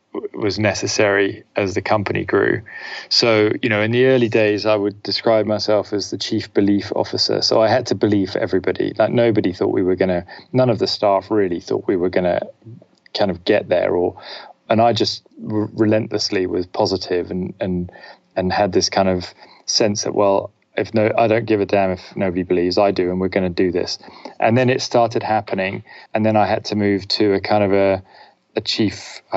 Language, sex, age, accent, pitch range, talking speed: English, male, 20-39, British, 95-110 Hz, 210 wpm